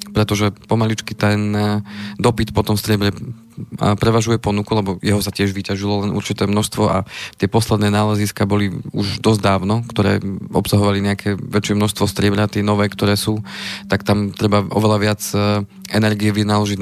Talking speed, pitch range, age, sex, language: 150 wpm, 100-110 Hz, 20-39, male, Slovak